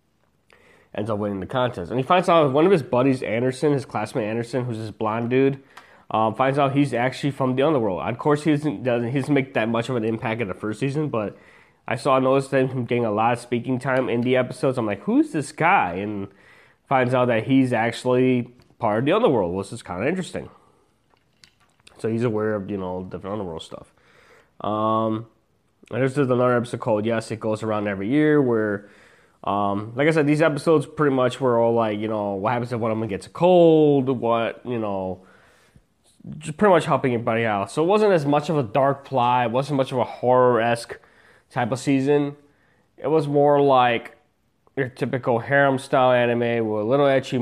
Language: English